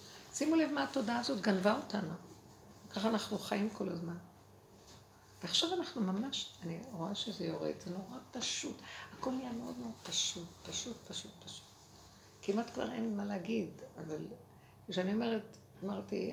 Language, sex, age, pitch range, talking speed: Hebrew, female, 60-79, 165-225 Hz, 145 wpm